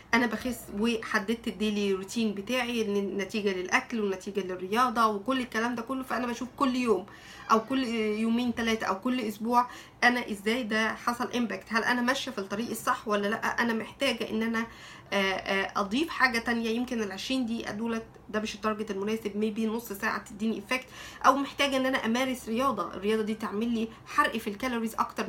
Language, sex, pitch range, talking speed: Arabic, female, 210-255 Hz, 170 wpm